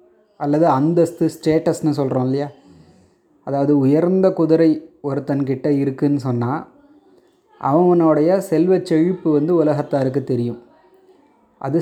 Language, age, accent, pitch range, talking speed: Tamil, 20-39, native, 135-170 Hz, 95 wpm